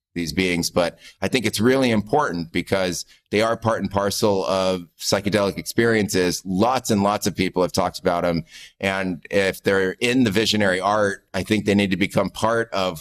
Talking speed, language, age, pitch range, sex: 190 wpm, English, 30-49, 85-100 Hz, male